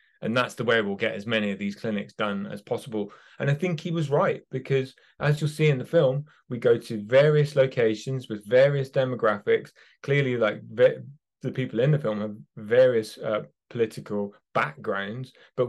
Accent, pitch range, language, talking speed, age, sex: British, 120-155 Hz, English, 185 wpm, 30-49, male